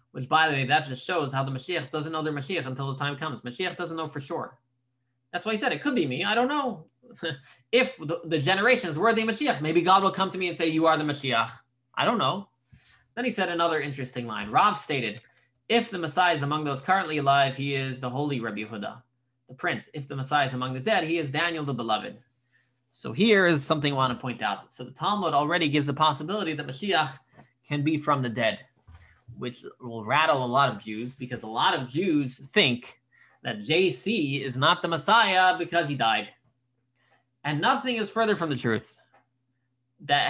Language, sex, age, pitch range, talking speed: English, male, 20-39, 125-170 Hz, 215 wpm